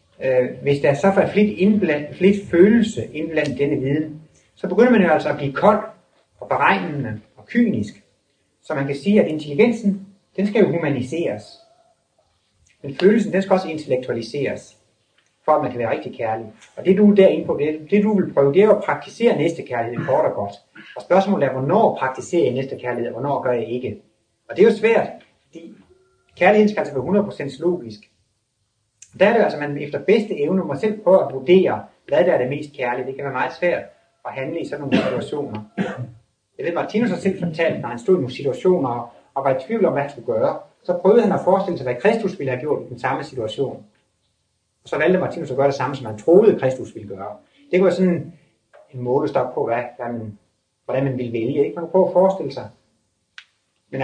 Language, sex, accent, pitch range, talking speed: Danish, male, native, 130-195 Hz, 215 wpm